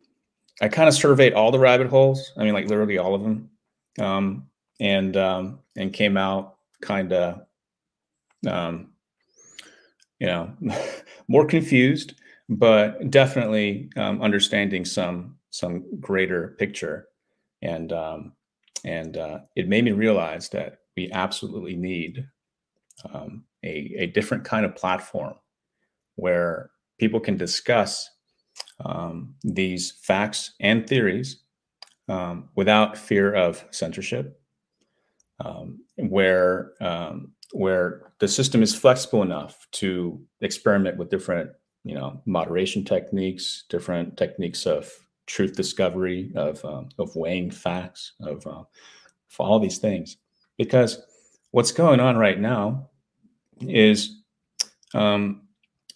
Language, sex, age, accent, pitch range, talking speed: English, male, 30-49, American, 95-125 Hz, 120 wpm